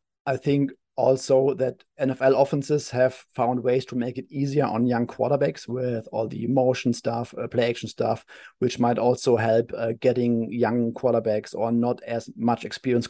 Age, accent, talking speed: 30-49, German, 175 wpm